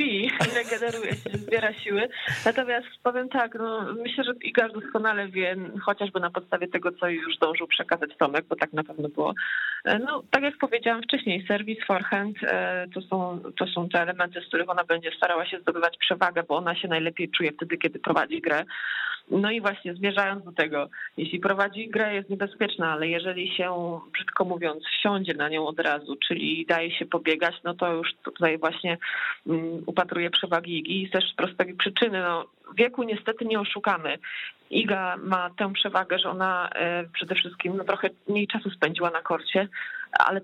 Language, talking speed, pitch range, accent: Polish, 175 wpm, 170-205 Hz, native